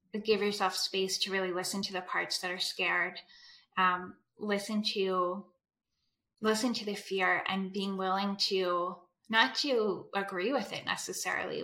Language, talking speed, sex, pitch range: English, 150 wpm, female, 185-215 Hz